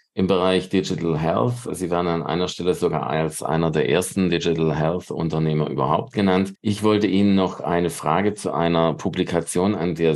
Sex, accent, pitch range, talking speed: male, German, 85-100 Hz, 170 wpm